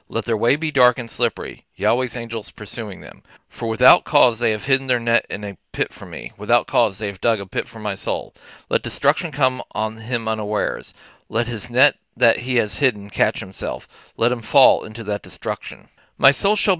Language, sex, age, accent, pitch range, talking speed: English, male, 40-59, American, 110-135 Hz, 205 wpm